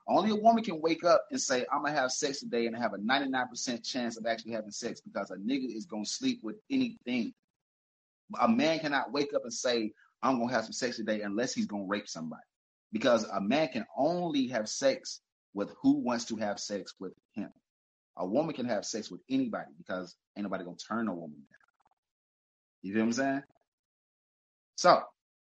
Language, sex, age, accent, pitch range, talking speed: English, male, 30-49, American, 105-135 Hz, 195 wpm